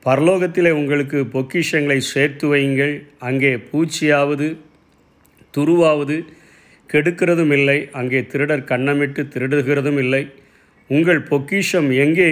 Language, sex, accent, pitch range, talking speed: Tamil, male, native, 130-155 Hz, 85 wpm